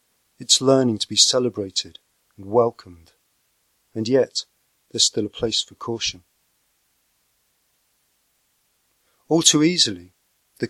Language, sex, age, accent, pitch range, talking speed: English, male, 40-59, British, 105-130 Hz, 105 wpm